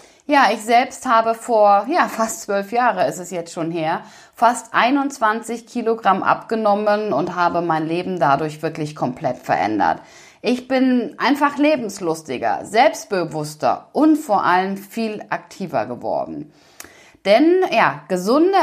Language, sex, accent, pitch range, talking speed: German, female, German, 180-265 Hz, 130 wpm